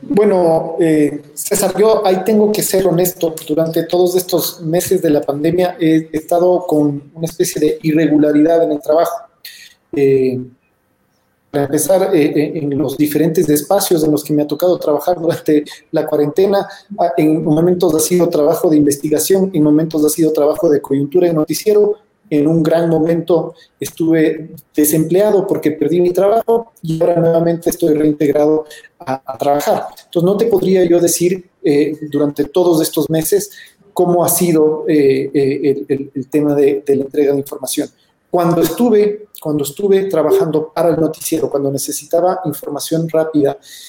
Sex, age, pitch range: male, 40-59, 150-180 Hz